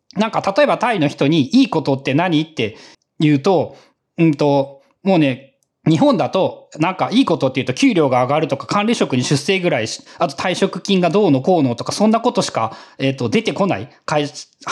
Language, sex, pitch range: Japanese, male, 135-225 Hz